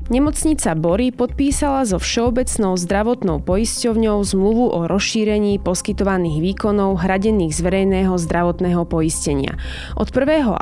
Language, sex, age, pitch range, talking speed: Slovak, female, 20-39, 180-220 Hz, 105 wpm